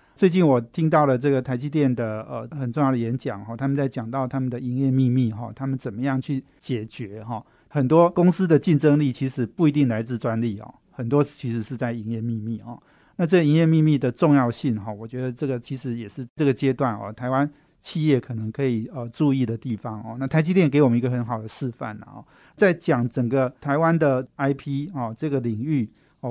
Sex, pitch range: male, 120-150 Hz